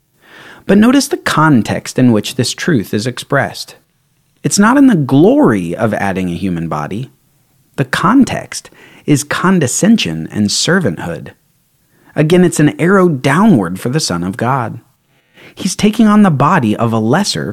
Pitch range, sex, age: 115-175 Hz, male, 30-49